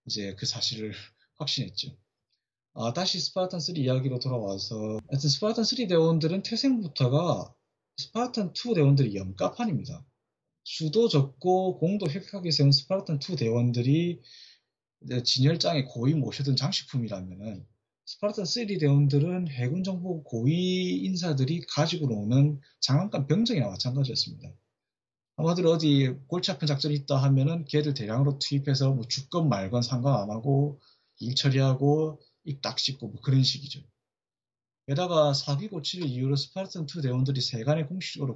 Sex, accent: male, native